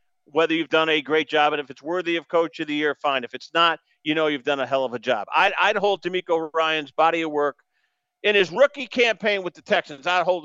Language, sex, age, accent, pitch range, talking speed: English, male, 50-69, American, 155-225 Hz, 260 wpm